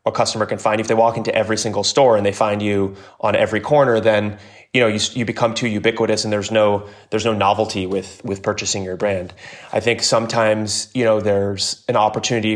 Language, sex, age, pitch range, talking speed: English, male, 20-39, 100-115 Hz, 220 wpm